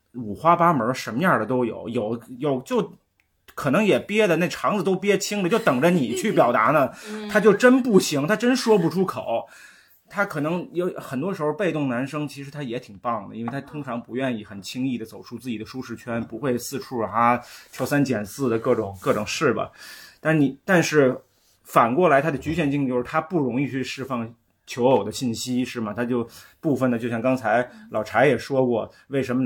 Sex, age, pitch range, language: male, 20-39, 115-155 Hz, Chinese